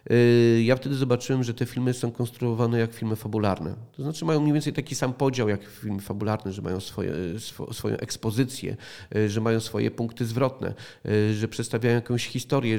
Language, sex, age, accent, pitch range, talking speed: Polish, male, 40-59, native, 110-130 Hz, 165 wpm